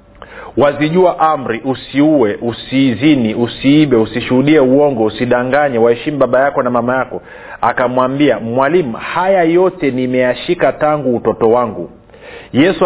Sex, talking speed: male, 105 wpm